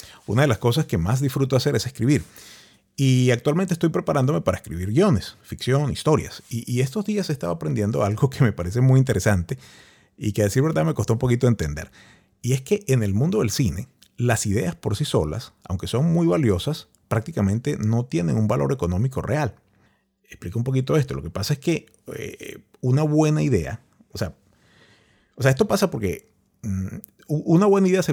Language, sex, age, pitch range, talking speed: English, male, 30-49, 105-145 Hz, 195 wpm